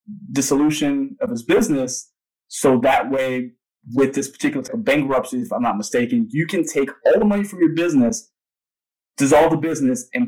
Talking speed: 165 wpm